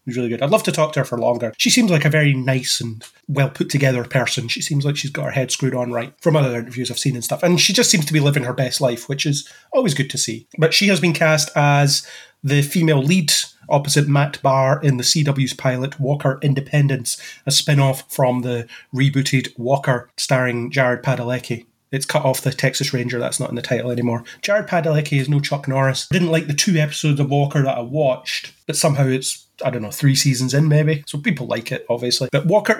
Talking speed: 230 wpm